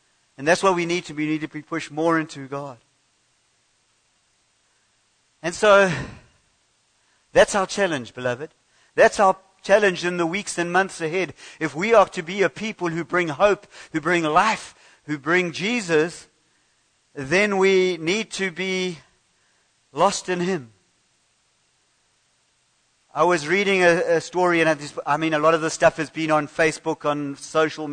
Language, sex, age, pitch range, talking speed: English, male, 50-69, 150-185 Hz, 155 wpm